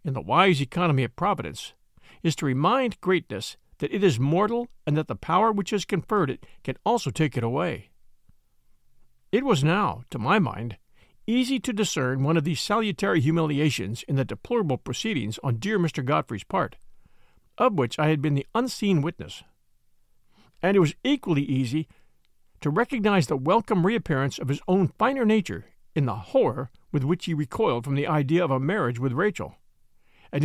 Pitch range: 130-195 Hz